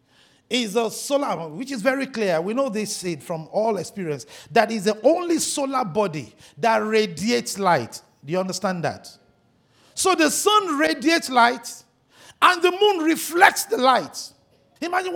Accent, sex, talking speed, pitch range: Nigerian, male, 150 wpm, 205-300 Hz